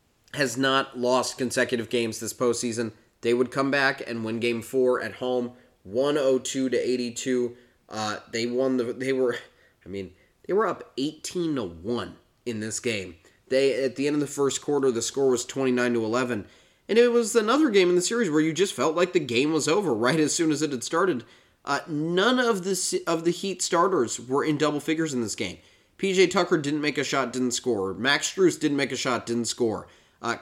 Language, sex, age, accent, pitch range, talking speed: English, male, 20-39, American, 120-160 Hz, 210 wpm